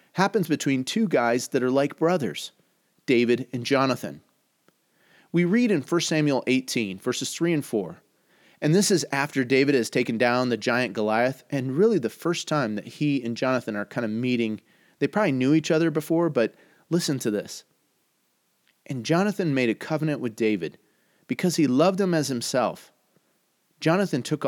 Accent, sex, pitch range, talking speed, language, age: American, male, 120-160 Hz, 170 wpm, English, 30-49